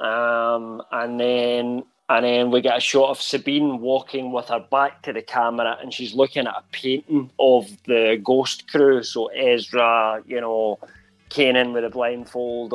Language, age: English, 20-39